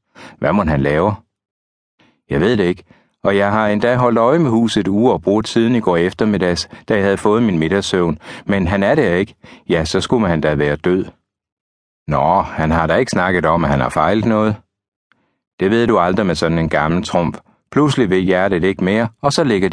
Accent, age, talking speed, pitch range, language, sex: native, 60-79, 215 wpm, 80-110 Hz, Danish, male